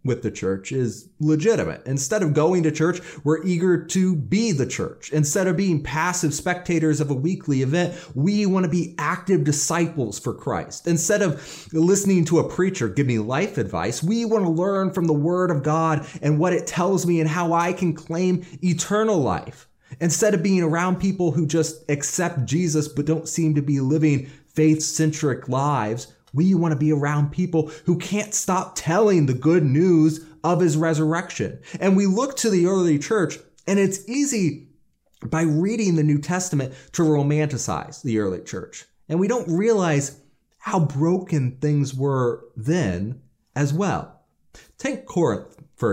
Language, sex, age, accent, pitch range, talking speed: English, male, 30-49, American, 145-180 Hz, 170 wpm